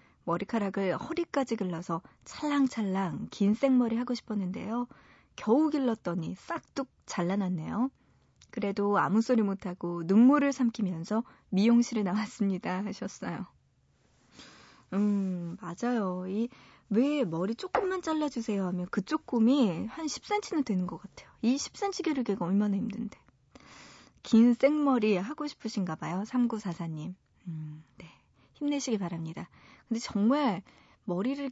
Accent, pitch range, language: native, 195-265 Hz, Korean